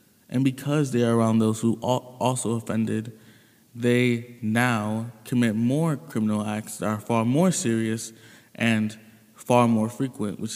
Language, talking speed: English, 140 wpm